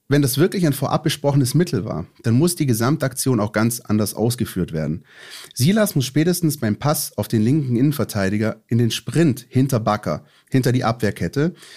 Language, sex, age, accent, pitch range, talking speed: German, male, 30-49, German, 110-150 Hz, 175 wpm